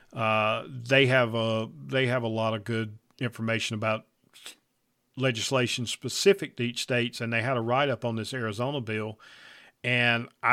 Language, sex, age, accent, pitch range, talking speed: English, male, 40-59, American, 115-135 Hz, 165 wpm